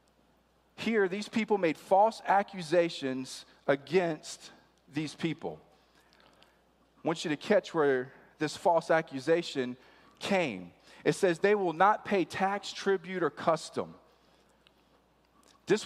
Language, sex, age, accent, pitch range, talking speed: English, male, 40-59, American, 160-205 Hz, 115 wpm